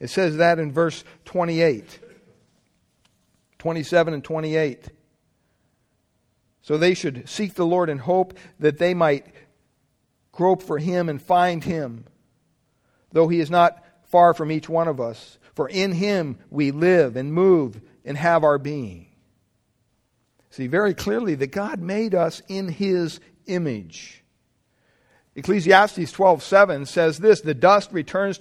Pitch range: 145-190 Hz